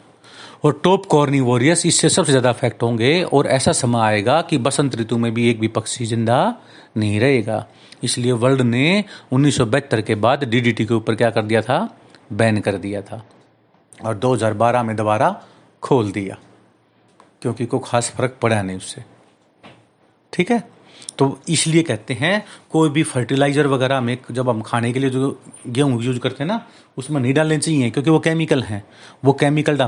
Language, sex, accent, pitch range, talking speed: Hindi, male, native, 120-155 Hz, 175 wpm